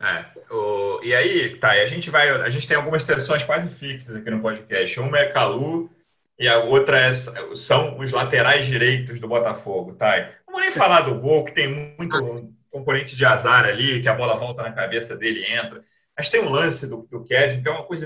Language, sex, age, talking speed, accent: Portuguese, male, 30-49, 220 wpm, Brazilian